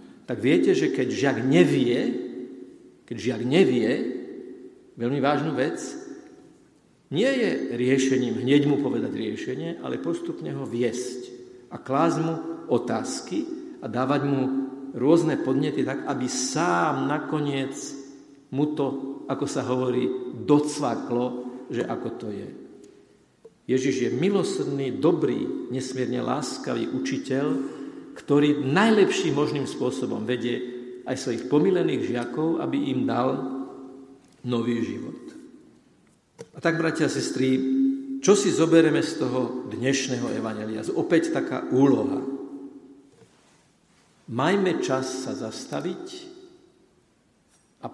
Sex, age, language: male, 50-69, Slovak